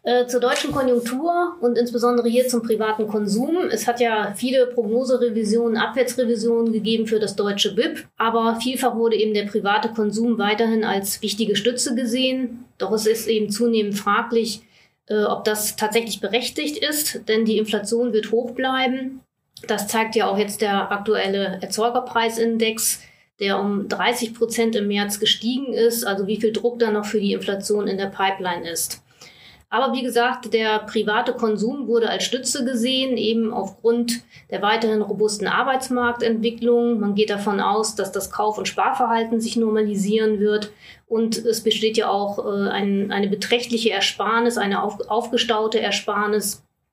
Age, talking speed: 30-49, 150 wpm